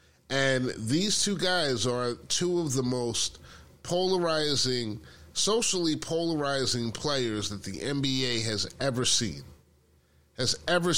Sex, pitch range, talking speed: male, 110-160 Hz, 115 wpm